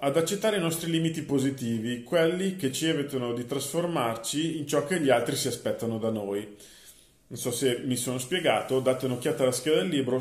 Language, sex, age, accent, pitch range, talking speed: Italian, male, 40-59, native, 120-150 Hz, 195 wpm